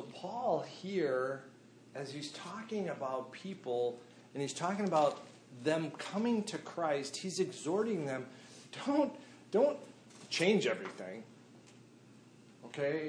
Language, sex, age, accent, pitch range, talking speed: English, male, 40-59, American, 130-180 Hz, 105 wpm